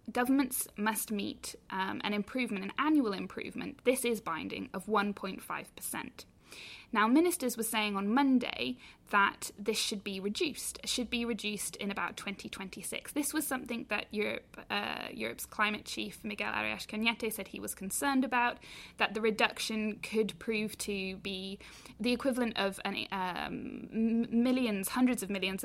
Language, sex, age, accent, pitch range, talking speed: English, female, 10-29, British, 200-240 Hz, 145 wpm